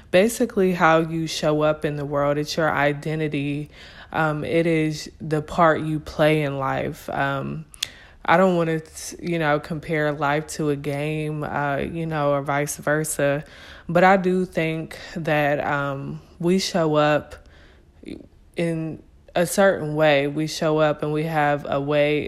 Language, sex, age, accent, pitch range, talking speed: English, female, 20-39, American, 145-160 Hz, 160 wpm